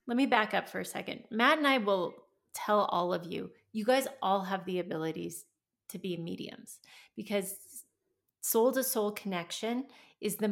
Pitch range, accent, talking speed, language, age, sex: 185-220 Hz, American, 175 wpm, English, 30-49, female